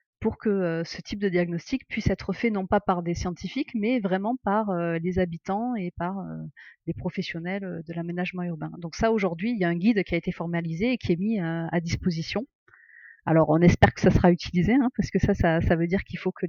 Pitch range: 175-225 Hz